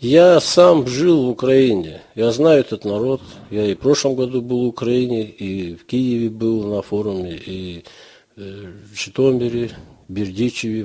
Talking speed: 150 wpm